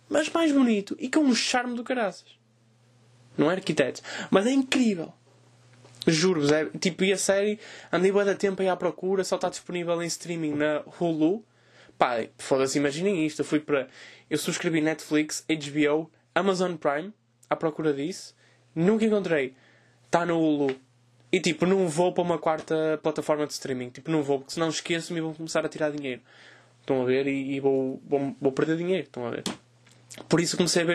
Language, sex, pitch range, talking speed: Portuguese, male, 150-185 Hz, 180 wpm